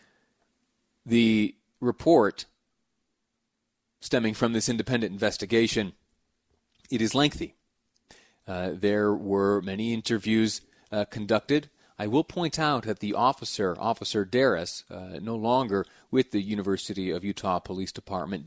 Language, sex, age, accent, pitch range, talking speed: English, male, 30-49, American, 95-110 Hz, 115 wpm